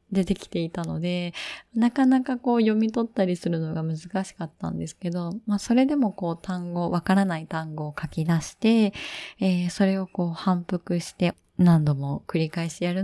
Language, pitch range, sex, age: Japanese, 165-225 Hz, female, 20-39